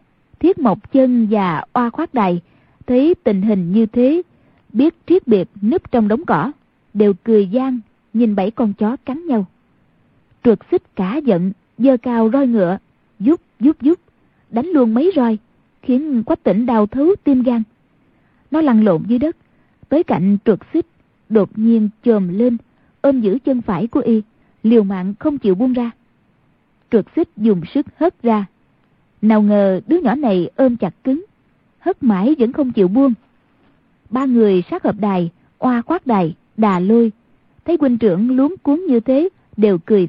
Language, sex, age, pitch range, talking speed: Vietnamese, female, 20-39, 210-265 Hz, 170 wpm